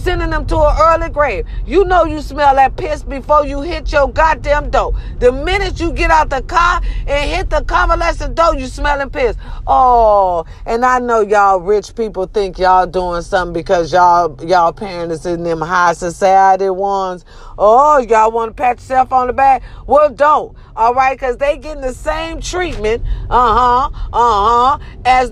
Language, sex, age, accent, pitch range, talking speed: English, female, 40-59, American, 235-300 Hz, 180 wpm